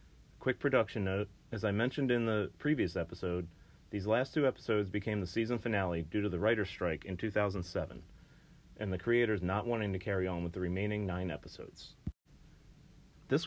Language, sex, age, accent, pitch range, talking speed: English, male, 30-49, American, 95-115 Hz, 175 wpm